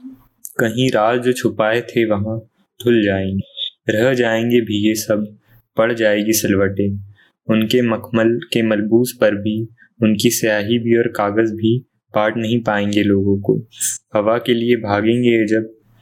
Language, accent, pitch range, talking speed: Hindi, native, 105-115 Hz, 140 wpm